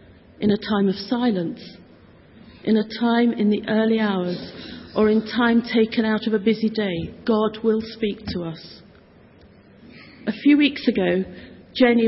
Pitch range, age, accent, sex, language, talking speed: 200-235 Hz, 50-69, British, female, English, 155 wpm